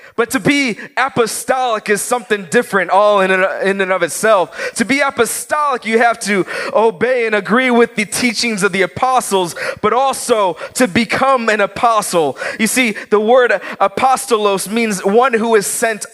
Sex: male